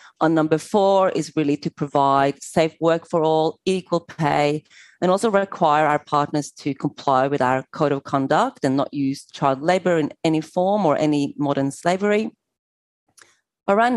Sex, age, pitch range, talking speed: female, 30-49, 145-175 Hz, 170 wpm